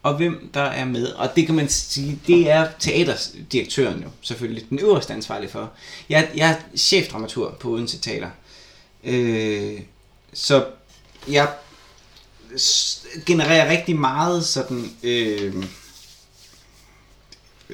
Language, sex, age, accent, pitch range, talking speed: Danish, male, 20-39, native, 115-150 Hz, 110 wpm